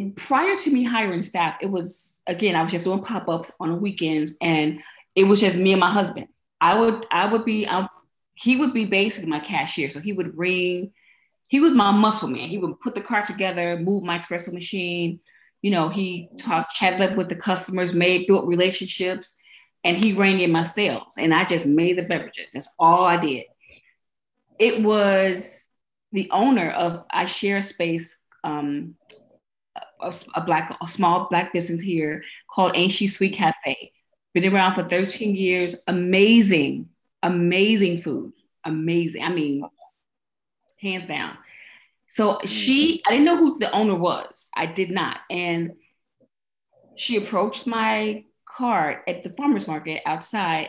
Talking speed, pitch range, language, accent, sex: 165 wpm, 170-205 Hz, English, American, female